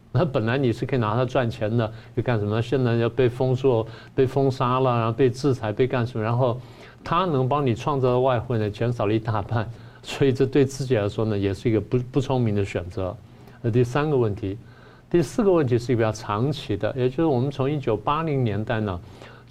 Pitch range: 110-135 Hz